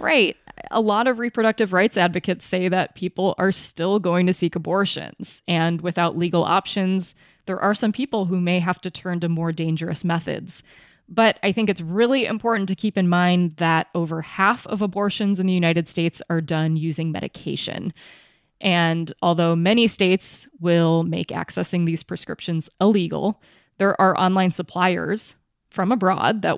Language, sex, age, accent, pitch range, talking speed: English, female, 20-39, American, 165-200 Hz, 165 wpm